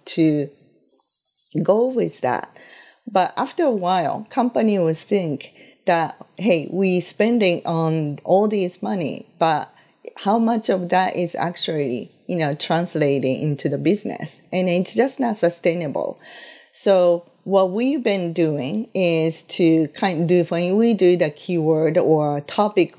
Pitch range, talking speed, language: 160-195 Hz, 140 wpm, English